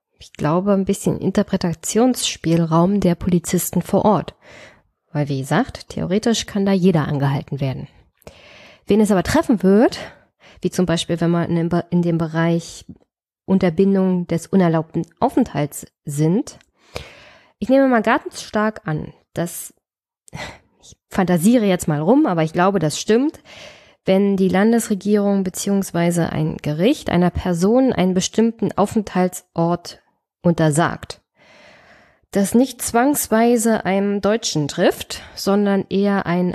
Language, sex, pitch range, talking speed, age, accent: German, female, 170-215 Hz, 125 wpm, 20-39, German